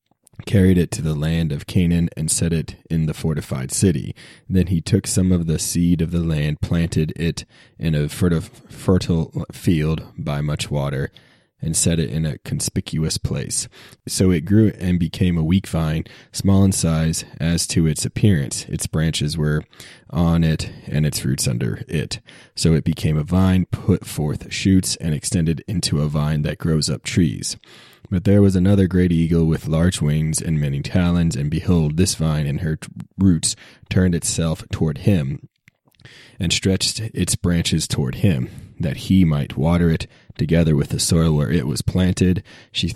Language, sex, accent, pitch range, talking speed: English, male, American, 80-95 Hz, 175 wpm